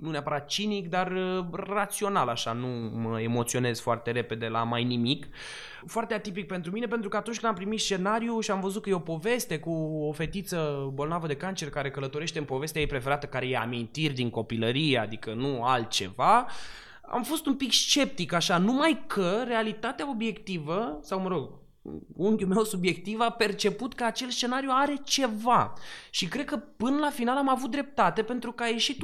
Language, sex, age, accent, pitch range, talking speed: Romanian, male, 20-39, native, 145-225 Hz, 180 wpm